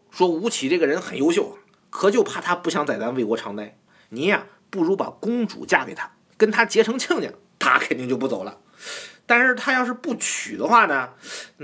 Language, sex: Chinese, male